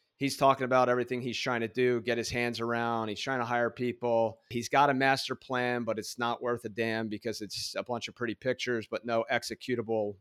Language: English